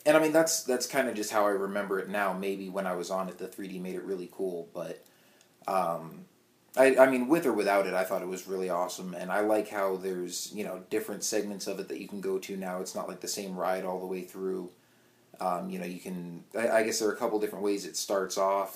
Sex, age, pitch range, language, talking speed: male, 30-49, 95-105 Hz, English, 270 wpm